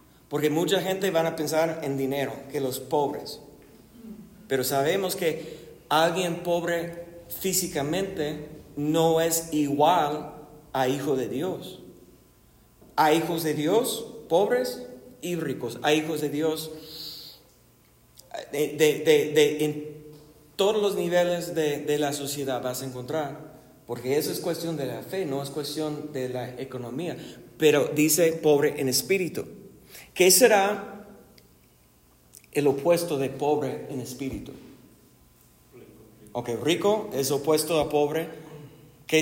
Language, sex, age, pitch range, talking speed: Spanish, male, 50-69, 135-170 Hz, 125 wpm